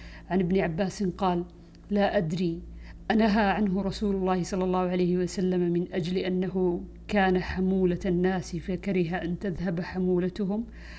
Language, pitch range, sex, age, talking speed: Arabic, 175-195 Hz, female, 50-69, 130 wpm